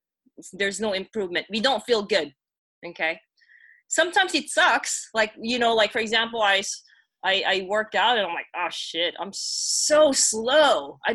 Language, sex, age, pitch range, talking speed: English, female, 20-39, 195-280 Hz, 165 wpm